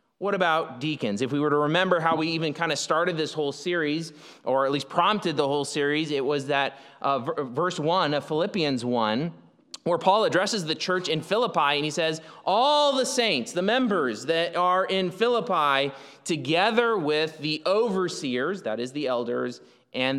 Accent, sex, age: American, male, 30-49